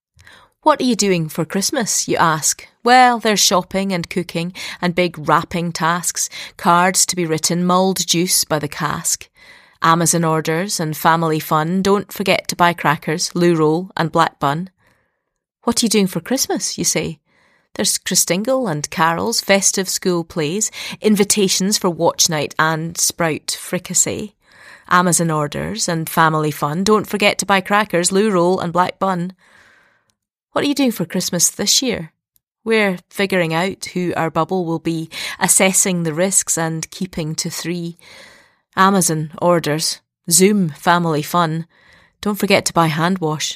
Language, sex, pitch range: English, female, 165-195 Hz